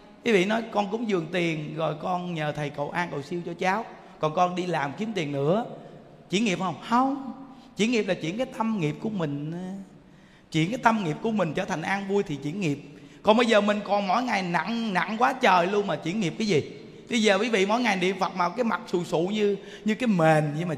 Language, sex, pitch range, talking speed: Vietnamese, male, 180-245 Hz, 250 wpm